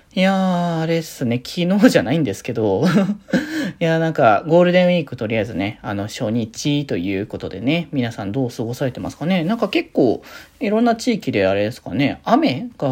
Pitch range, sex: 120-170 Hz, male